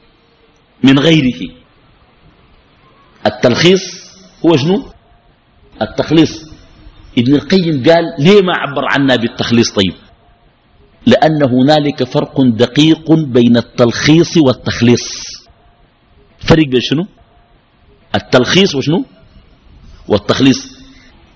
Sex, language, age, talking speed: male, Arabic, 50-69, 80 wpm